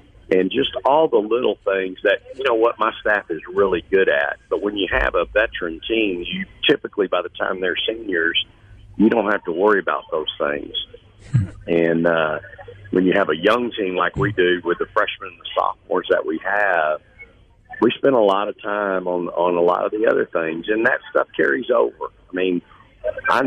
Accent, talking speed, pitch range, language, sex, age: American, 205 wpm, 90-115 Hz, English, male, 50-69